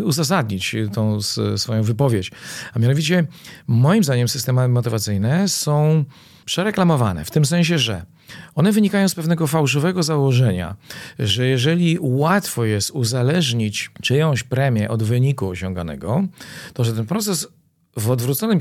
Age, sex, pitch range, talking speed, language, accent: 40-59, male, 110-160 Hz, 125 wpm, Polish, native